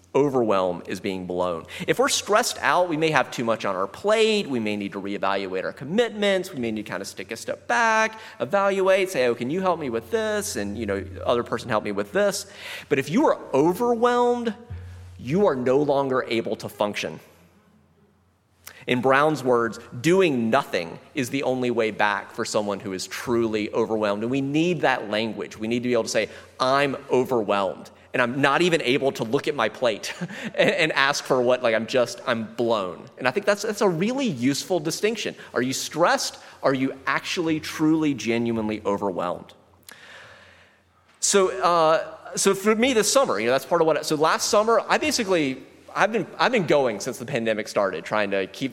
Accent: American